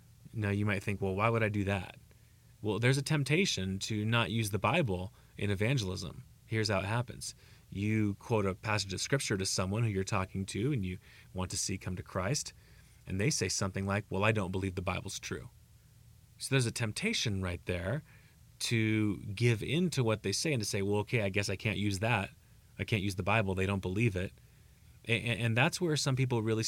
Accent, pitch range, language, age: American, 100-125 Hz, English, 30-49